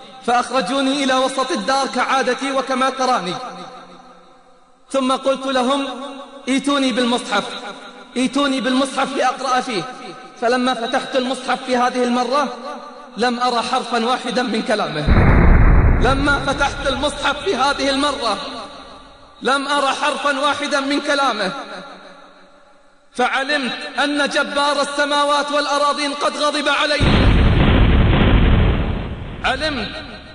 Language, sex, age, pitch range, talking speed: Arabic, male, 30-49, 260-290 Hz, 95 wpm